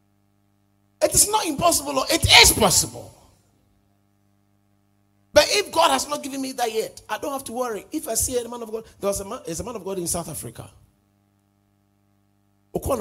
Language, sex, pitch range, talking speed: English, male, 100-150 Hz, 140 wpm